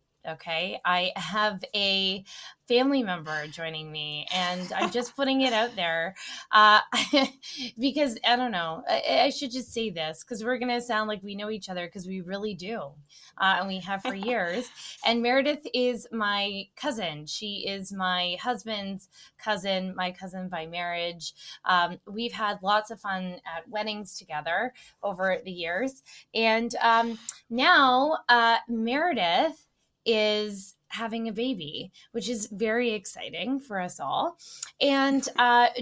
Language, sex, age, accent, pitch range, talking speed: English, female, 20-39, American, 185-245 Hz, 150 wpm